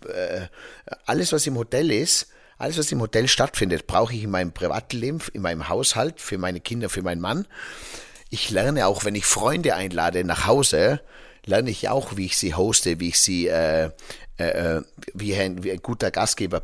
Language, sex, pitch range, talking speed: German, male, 85-115 Hz, 185 wpm